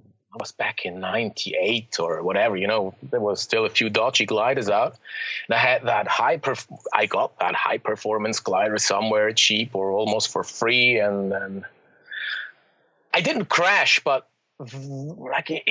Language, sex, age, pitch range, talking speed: English, male, 30-49, 125-160 Hz, 155 wpm